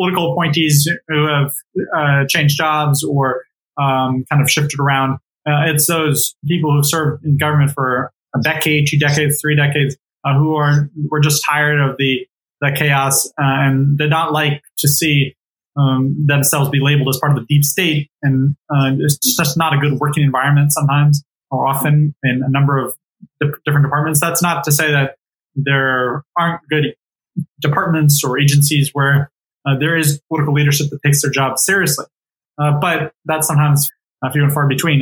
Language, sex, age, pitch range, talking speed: English, male, 20-39, 140-160 Hz, 180 wpm